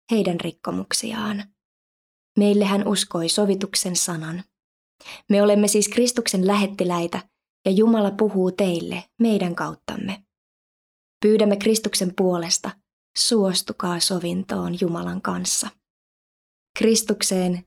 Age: 20-39